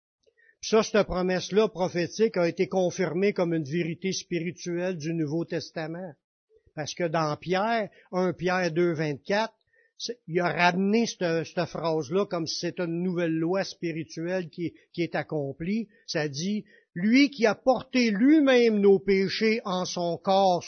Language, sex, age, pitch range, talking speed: French, male, 60-79, 175-230 Hz, 150 wpm